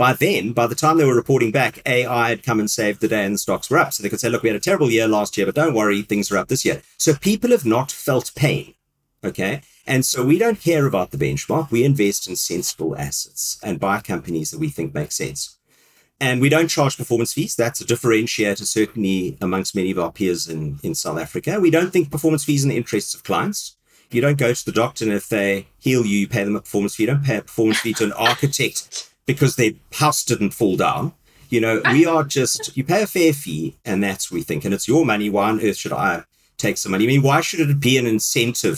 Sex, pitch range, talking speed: male, 100-140 Hz, 255 wpm